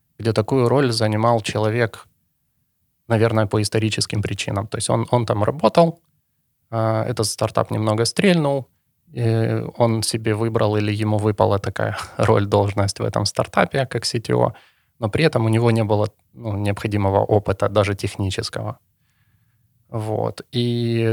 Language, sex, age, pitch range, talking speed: Ukrainian, male, 20-39, 105-120 Hz, 130 wpm